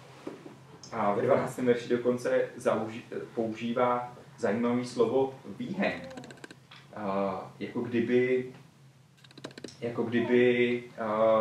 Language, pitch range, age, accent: Czech, 110-140 Hz, 30-49, native